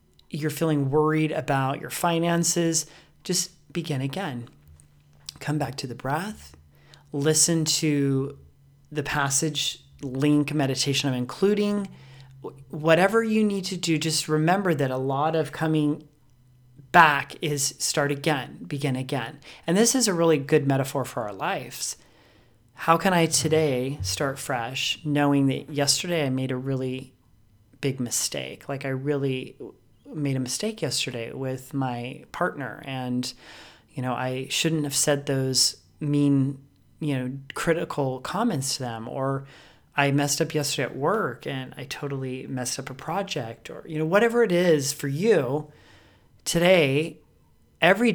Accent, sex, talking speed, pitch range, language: American, male, 140 wpm, 130-155 Hz, English